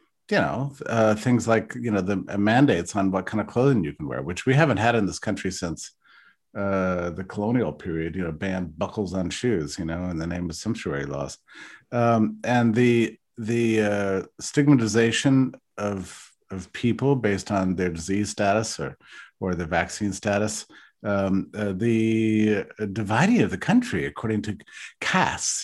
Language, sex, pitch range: English, male, 95-120 Hz